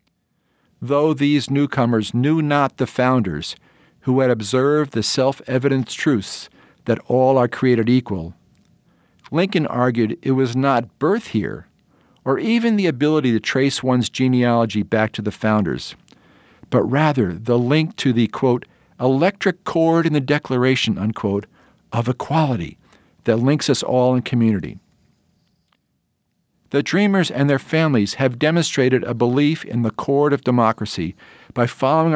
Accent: American